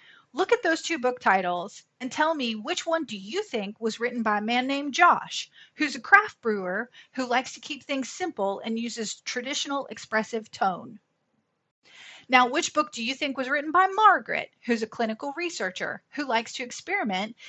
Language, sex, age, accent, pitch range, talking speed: English, female, 30-49, American, 225-300 Hz, 185 wpm